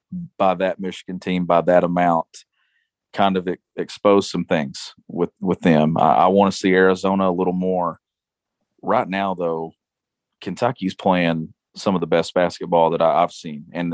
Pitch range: 90-105 Hz